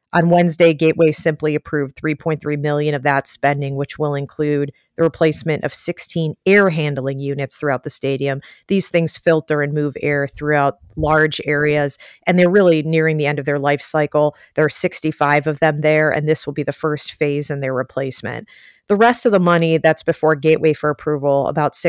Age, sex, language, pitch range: 30-49, female, English, 145-170 Hz